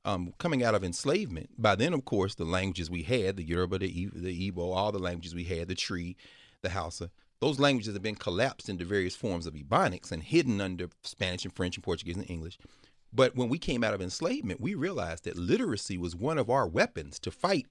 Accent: American